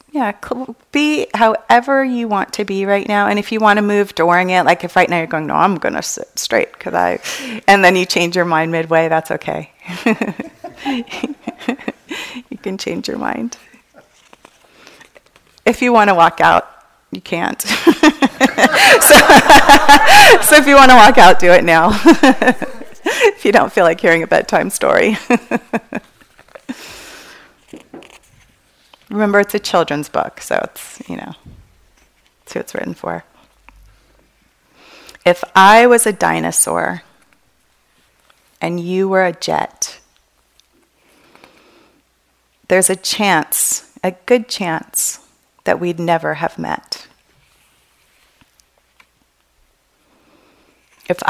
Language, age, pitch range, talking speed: English, 30-49, 175-250 Hz, 125 wpm